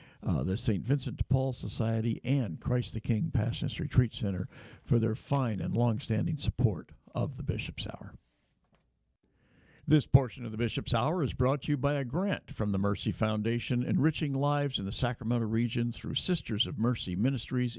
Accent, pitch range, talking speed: American, 115-145 Hz, 175 wpm